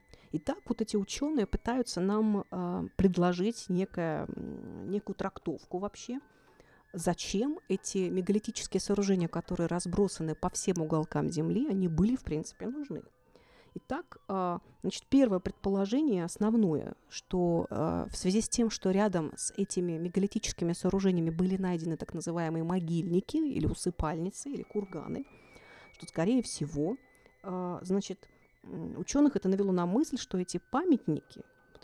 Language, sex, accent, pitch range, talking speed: Russian, female, native, 175-220 Hz, 125 wpm